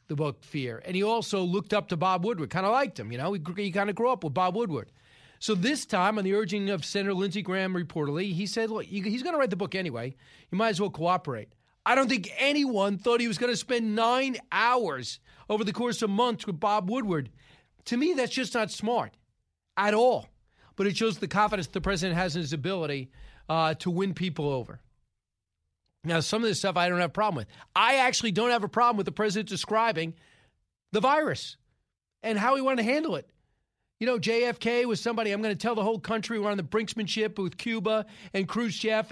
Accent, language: American, English